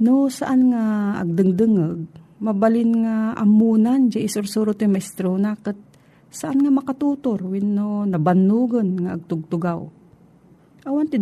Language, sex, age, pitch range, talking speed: Filipino, female, 40-59, 165-220 Hz, 130 wpm